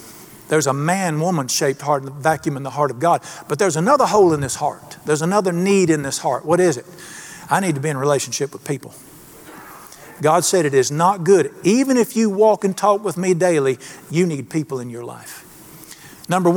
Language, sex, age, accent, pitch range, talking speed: English, male, 50-69, American, 150-190 Hz, 210 wpm